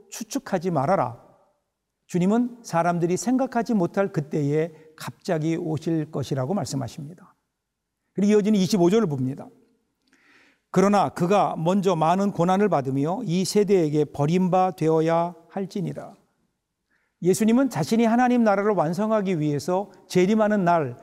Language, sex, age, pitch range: Korean, male, 60-79, 165-210 Hz